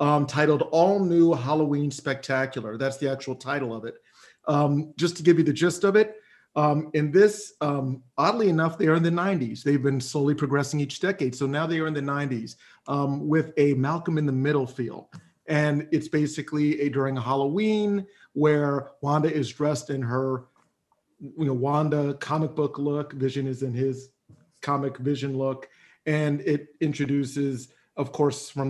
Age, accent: 40-59, American